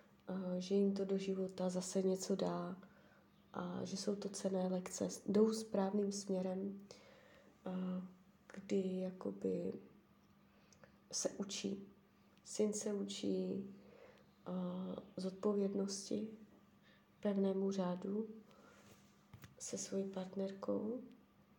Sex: female